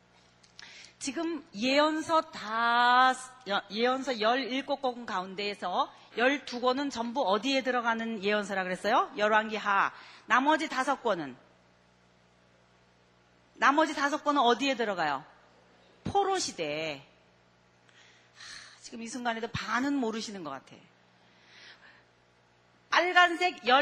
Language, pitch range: Korean, 200-305 Hz